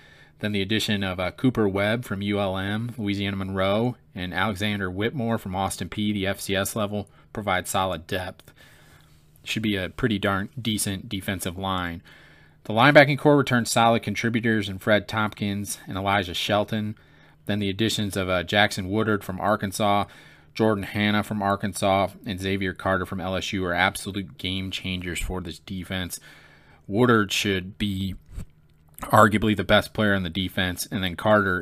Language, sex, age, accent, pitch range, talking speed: English, male, 30-49, American, 95-105 Hz, 155 wpm